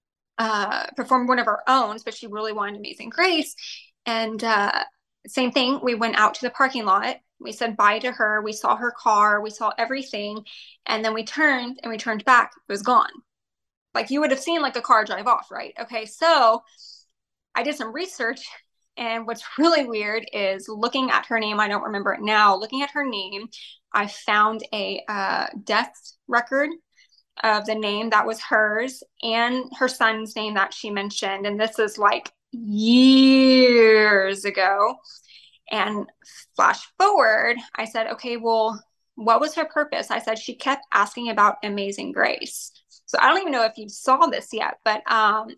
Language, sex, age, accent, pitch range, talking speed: English, female, 20-39, American, 215-255 Hz, 180 wpm